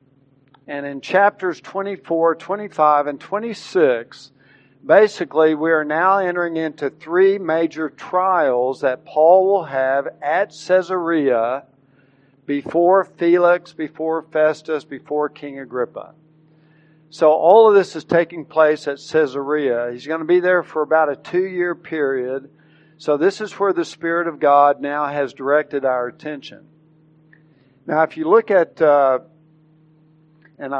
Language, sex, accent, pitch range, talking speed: English, male, American, 140-170 Hz, 135 wpm